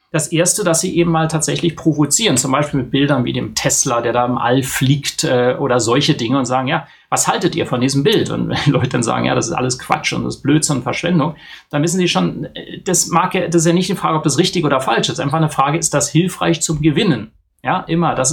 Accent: German